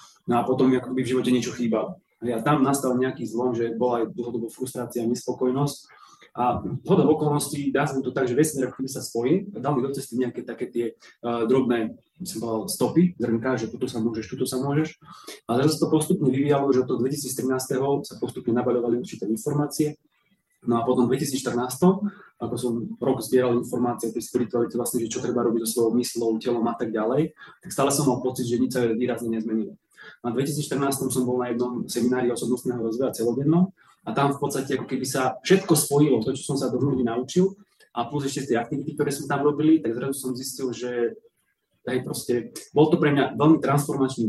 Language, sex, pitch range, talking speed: Slovak, male, 120-140 Hz, 200 wpm